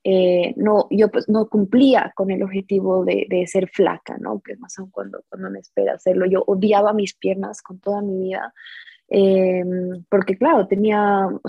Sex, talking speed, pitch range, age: female, 185 wpm, 195-225 Hz, 20-39